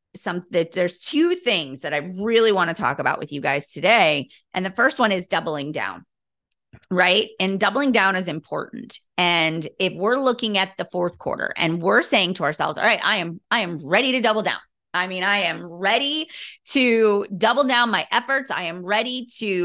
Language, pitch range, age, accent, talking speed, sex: English, 180-225 Hz, 30-49, American, 200 wpm, female